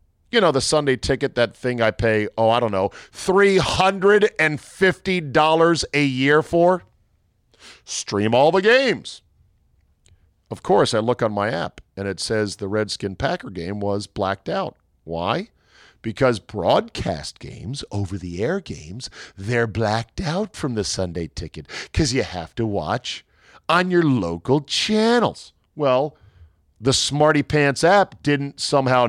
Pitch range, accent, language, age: 100-145 Hz, American, English, 40-59